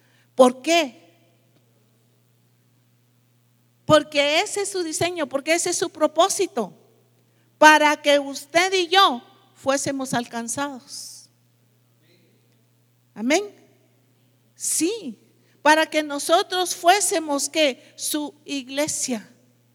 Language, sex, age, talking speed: English, female, 50-69, 85 wpm